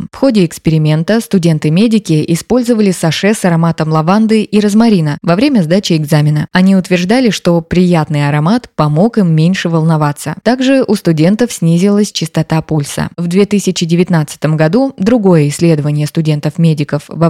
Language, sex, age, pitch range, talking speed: Russian, female, 20-39, 155-205 Hz, 130 wpm